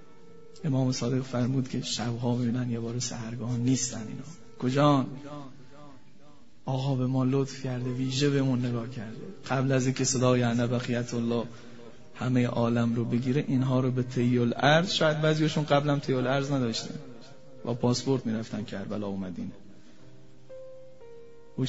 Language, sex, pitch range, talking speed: Persian, male, 120-140 Hz, 140 wpm